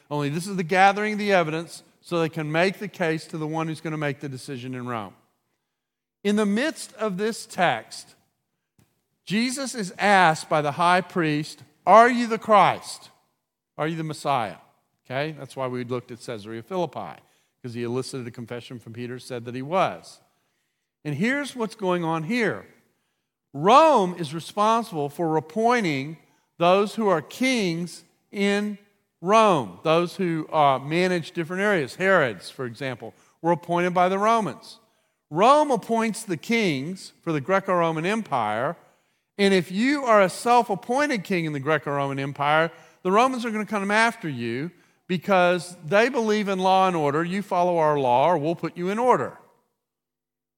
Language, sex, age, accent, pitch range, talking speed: English, male, 40-59, American, 150-205 Hz, 165 wpm